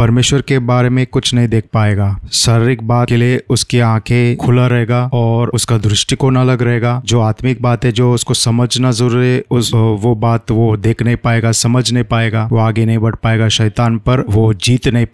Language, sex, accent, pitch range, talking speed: Hindi, male, native, 110-125 Hz, 200 wpm